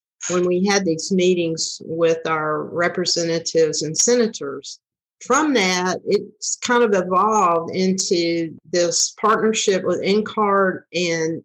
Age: 50-69